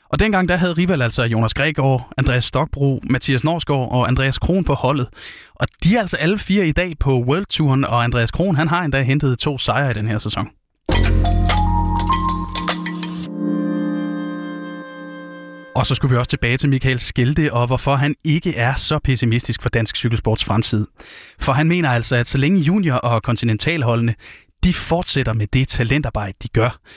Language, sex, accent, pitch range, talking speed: Danish, male, native, 115-150 Hz, 170 wpm